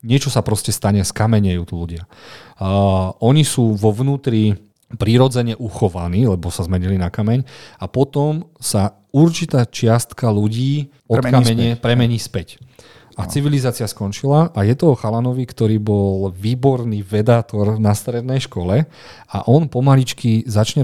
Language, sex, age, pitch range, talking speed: Slovak, male, 40-59, 100-125 Hz, 140 wpm